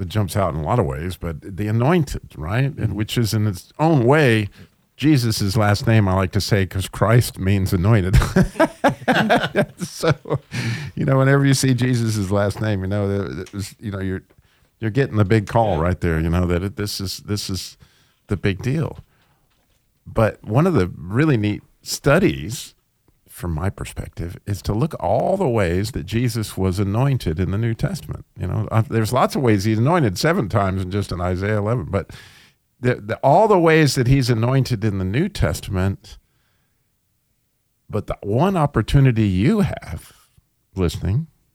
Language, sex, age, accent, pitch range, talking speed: English, male, 50-69, American, 95-125 Hz, 170 wpm